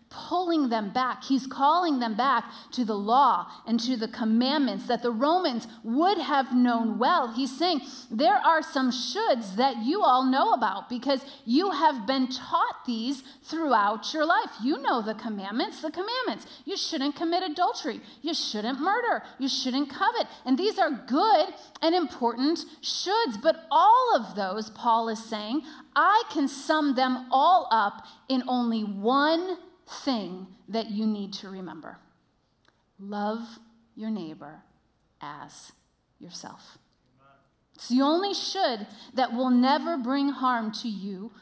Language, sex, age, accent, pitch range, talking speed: English, female, 30-49, American, 235-315 Hz, 150 wpm